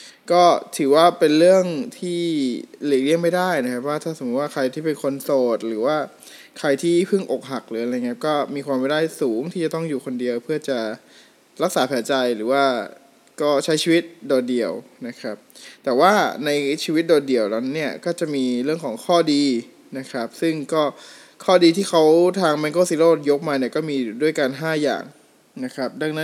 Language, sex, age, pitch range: Thai, male, 20-39, 130-175 Hz